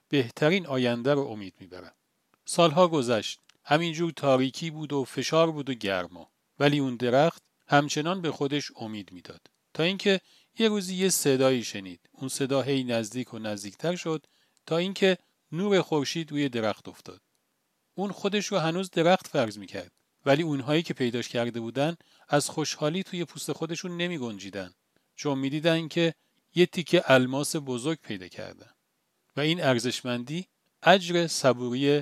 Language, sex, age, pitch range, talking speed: Persian, male, 40-59, 130-180 Hz, 145 wpm